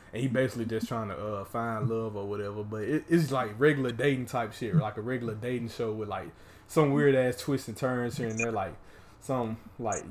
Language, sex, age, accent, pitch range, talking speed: English, male, 20-39, American, 105-125 Hz, 225 wpm